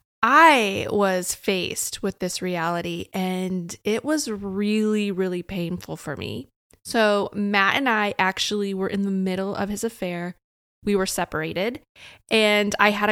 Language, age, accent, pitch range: English, 20-39, American, 185-220 Hz